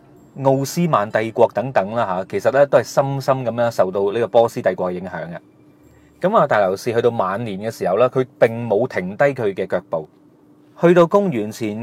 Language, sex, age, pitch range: Chinese, male, 30-49, 115-150 Hz